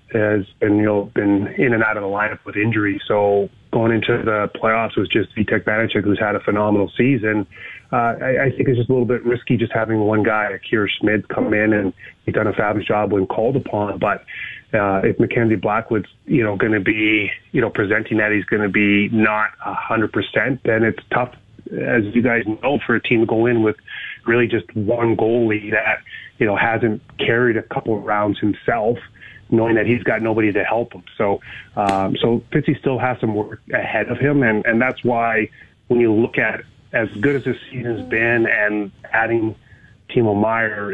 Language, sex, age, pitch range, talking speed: English, male, 30-49, 105-115 Hz, 210 wpm